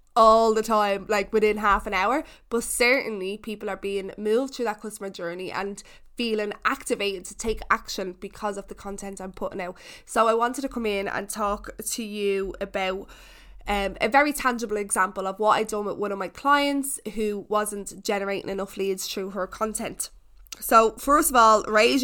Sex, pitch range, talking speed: female, 200-225 Hz, 190 wpm